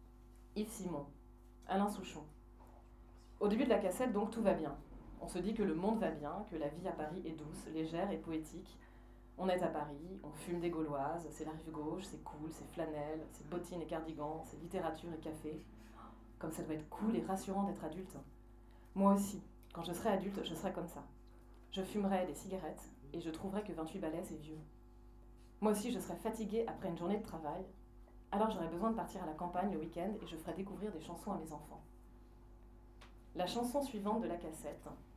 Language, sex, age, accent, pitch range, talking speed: French, female, 30-49, French, 145-185 Hz, 205 wpm